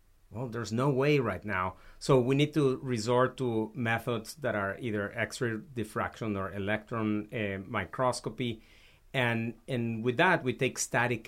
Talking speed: 155 wpm